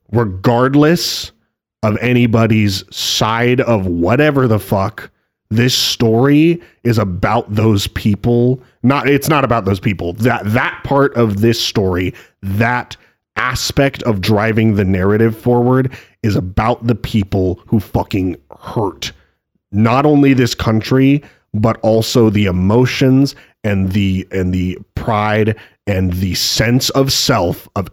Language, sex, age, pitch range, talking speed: English, male, 30-49, 95-120 Hz, 125 wpm